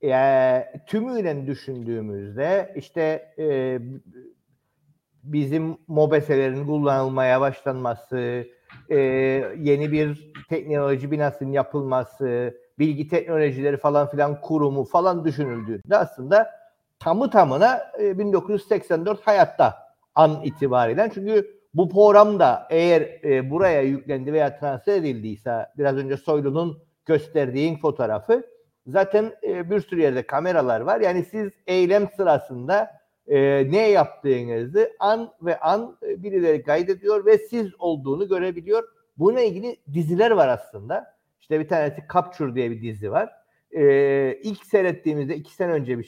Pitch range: 140-200 Hz